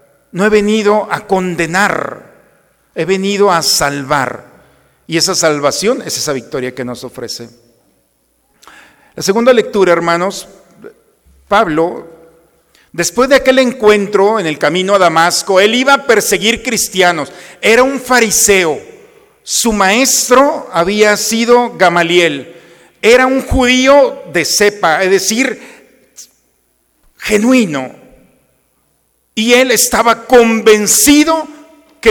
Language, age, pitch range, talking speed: Spanish, 50-69, 170-250 Hz, 110 wpm